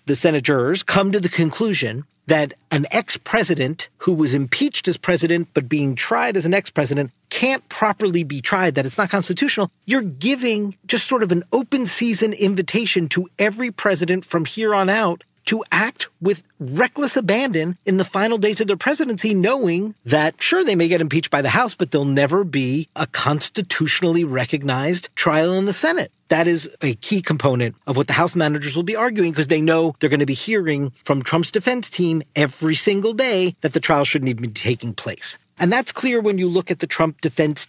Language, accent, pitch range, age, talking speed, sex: English, American, 140-200 Hz, 50-69, 195 wpm, male